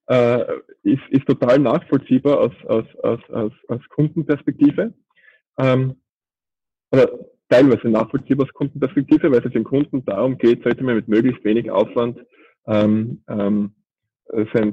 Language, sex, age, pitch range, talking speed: German, male, 20-39, 115-145 Hz, 125 wpm